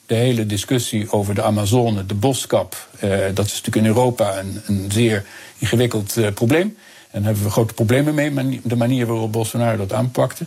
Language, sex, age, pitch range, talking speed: Dutch, male, 50-69, 110-135 Hz, 195 wpm